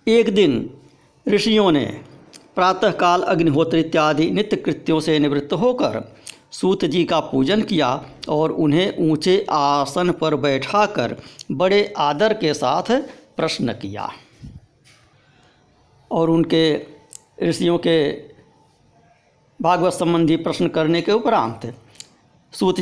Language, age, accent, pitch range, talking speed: Hindi, 60-79, native, 150-210 Hz, 105 wpm